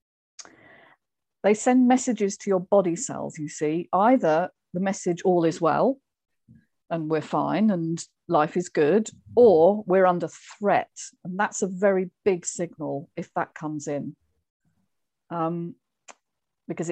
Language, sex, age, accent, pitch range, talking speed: English, female, 50-69, British, 155-205 Hz, 135 wpm